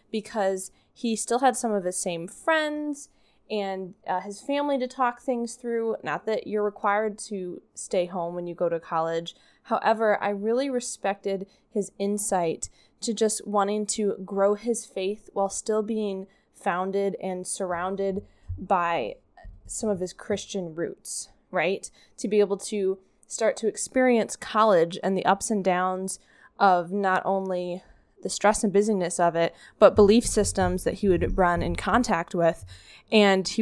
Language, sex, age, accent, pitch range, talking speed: English, female, 20-39, American, 180-215 Hz, 160 wpm